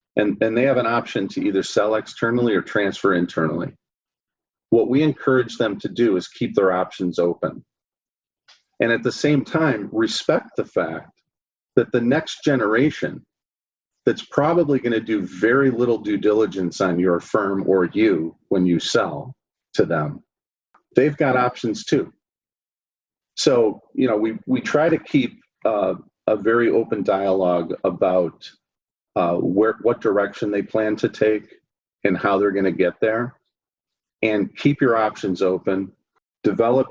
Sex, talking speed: male, 150 wpm